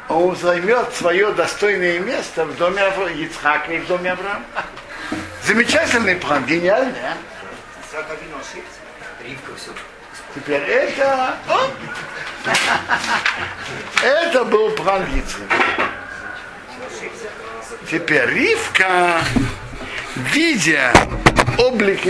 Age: 60-79